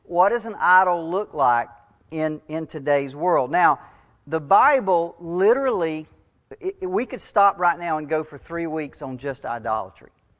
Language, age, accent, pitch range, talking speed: English, 40-59, American, 130-175 Hz, 160 wpm